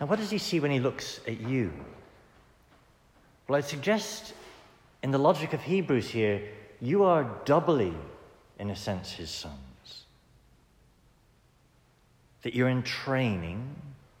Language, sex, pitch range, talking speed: English, male, 105-140 Hz, 130 wpm